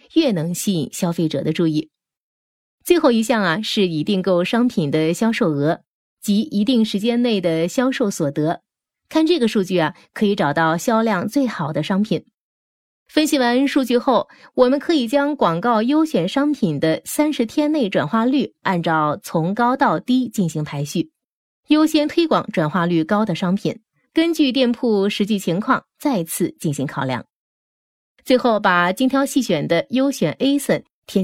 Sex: female